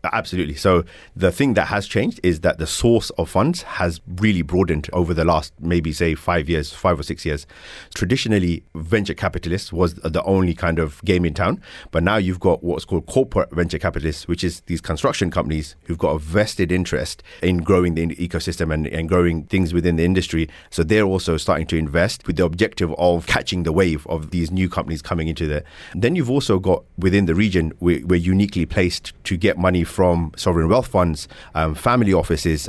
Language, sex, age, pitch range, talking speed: English, male, 30-49, 80-95 Hz, 200 wpm